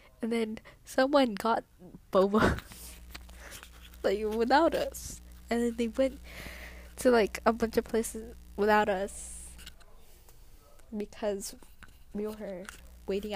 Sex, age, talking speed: female, 10-29, 110 wpm